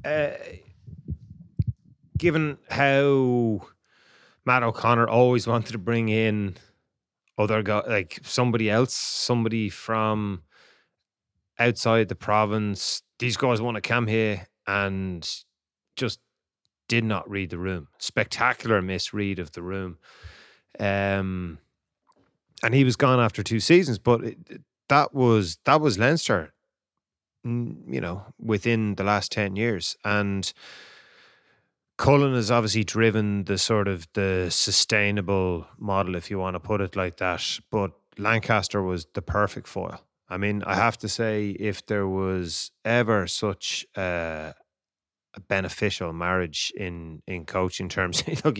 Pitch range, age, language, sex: 95-115 Hz, 30-49, English, male